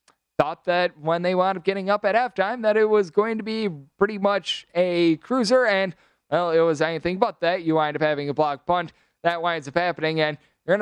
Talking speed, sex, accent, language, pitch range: 225 wpm, male, American, English, 170-195 Hz